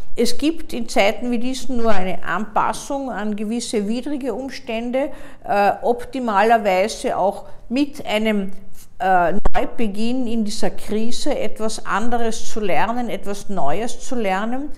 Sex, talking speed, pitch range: female, 125 wpm, 215-260 Hz